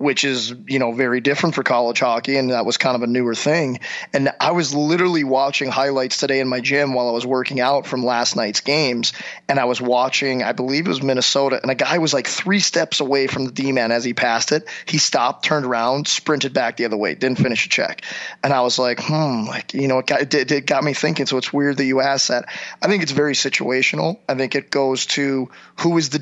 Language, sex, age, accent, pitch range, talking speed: English, male, 20-39, American, 130-145 Hz, 245 wpm